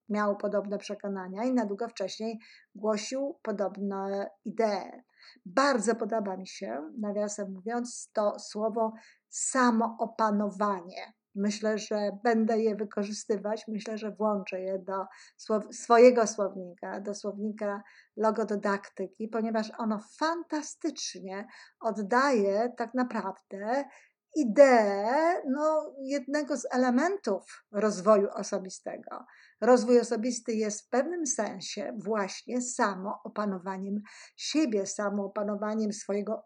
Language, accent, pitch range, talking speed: Polish, native, 205-250 Hz, 95 wpm